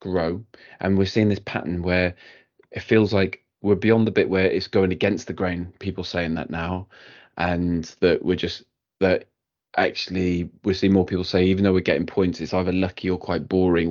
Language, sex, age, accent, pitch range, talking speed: English, male, 20-39, British, 90-100 Hz, 200 wpm